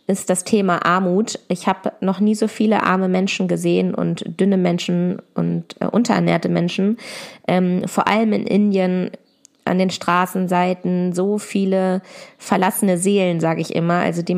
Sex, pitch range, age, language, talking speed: female, 175-205 Hz, 20-39, German, 155 wpm